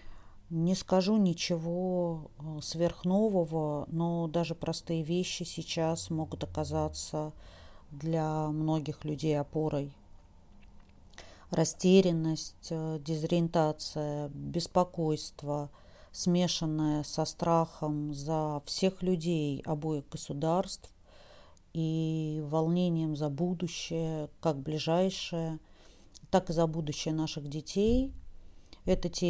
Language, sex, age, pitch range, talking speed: Russian, female, 40-59, 150-170 Hz, 80 wpm